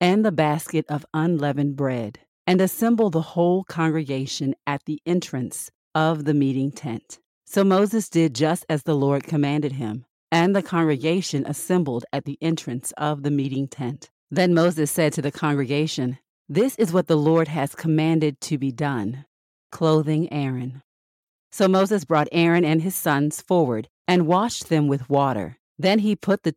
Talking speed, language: 165 wpm, English